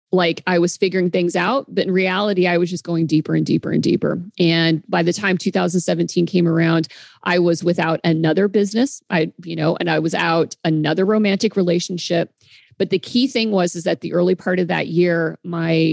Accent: American